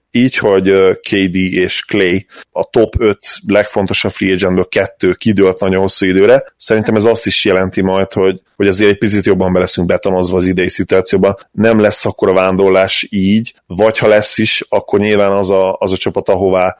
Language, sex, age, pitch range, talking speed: Hungarian, male, 30-49, 90-105 Hz, 180 wpm